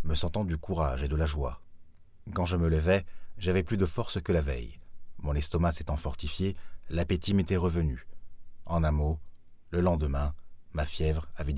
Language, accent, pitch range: French, French, 80-90 Hz